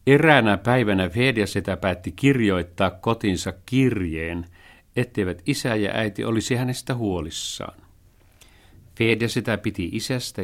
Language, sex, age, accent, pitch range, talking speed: Finnish, male, 50-69, native, 90-120 Hz, 100 wpm